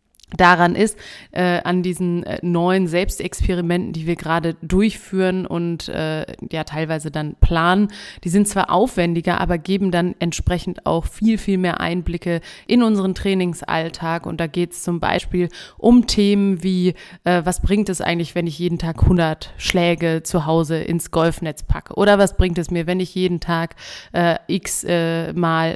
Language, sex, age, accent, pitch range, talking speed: German, female, 30-49, German, 170-190 Hz, 160 wpm